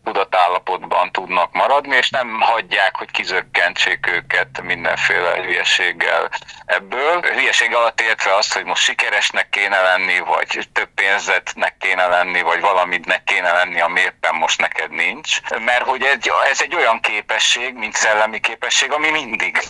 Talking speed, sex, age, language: 145 wpm, male, 50-69, Hungarian